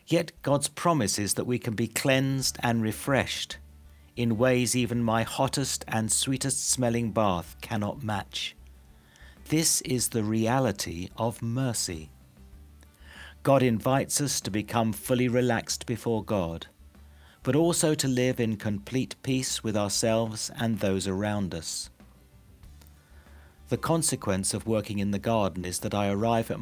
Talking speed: 140 wpm